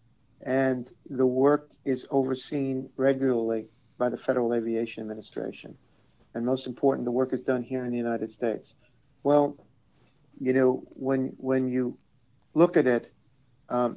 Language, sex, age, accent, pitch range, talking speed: English, male, 50-69, American, 120-135 Hz, 140 wpm